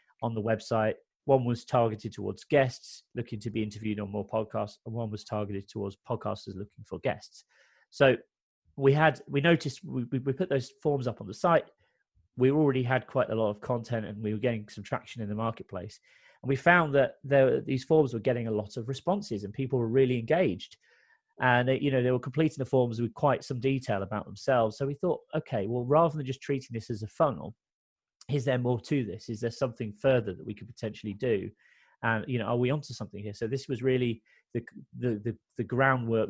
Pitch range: 110-135 Hz